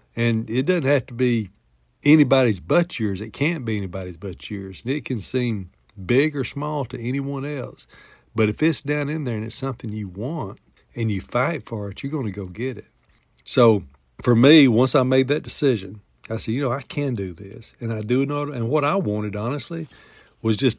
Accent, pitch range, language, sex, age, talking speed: American, 110-135 Hz, English, male, 60-79, 215 wpm